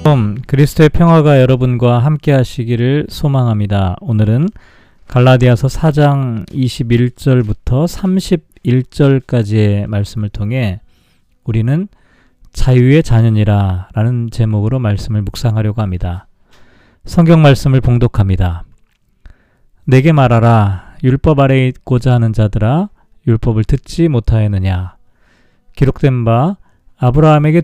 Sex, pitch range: male, 110-145 Hz